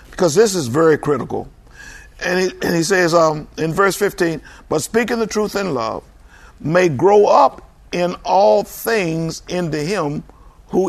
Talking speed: 160 wpm